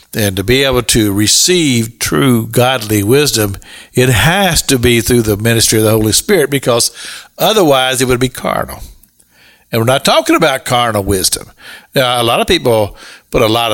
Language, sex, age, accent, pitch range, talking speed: English, male, 60-79, American, 115-155 Hz, 180 wpm